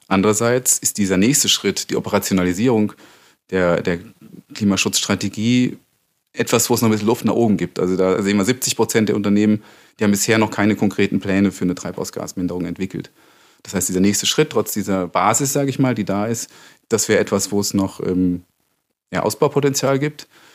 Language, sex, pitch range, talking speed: German, male, 95-115 Hz, 185 wpm